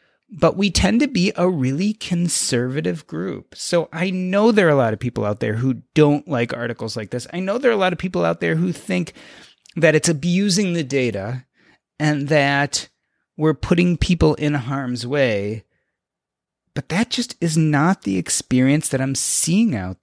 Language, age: English, 30-49